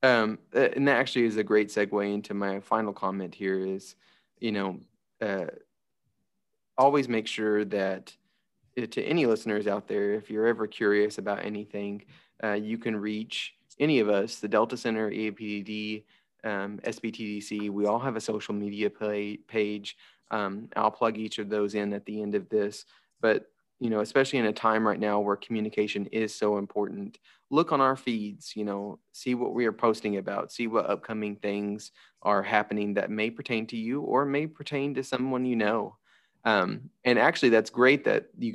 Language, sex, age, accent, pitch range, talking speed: English, male, 20-39, American, 105-115 Hz, 175 wpm